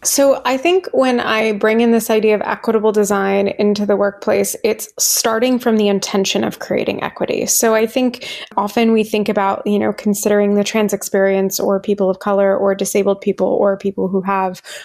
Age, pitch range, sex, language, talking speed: 20-39, 200-230 Hz, female, English, 190 wpm